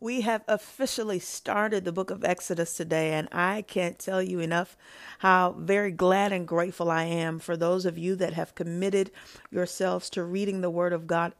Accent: American